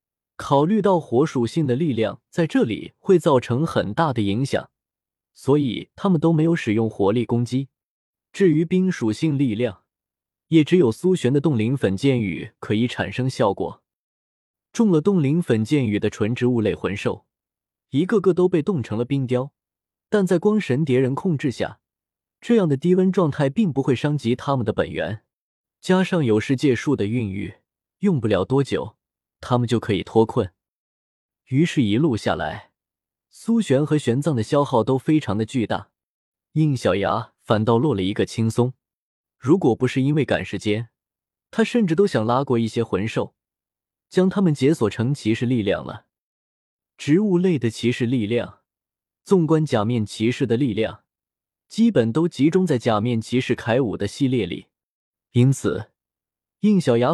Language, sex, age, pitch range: Chinese, male, 20-39, 115-160 Hz